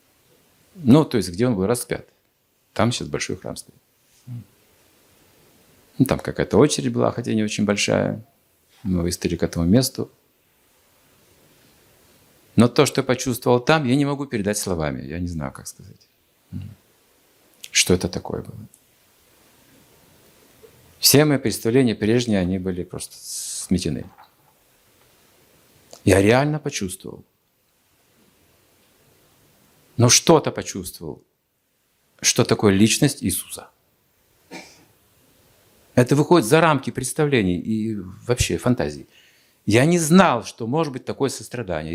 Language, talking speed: Russian, 115 wpm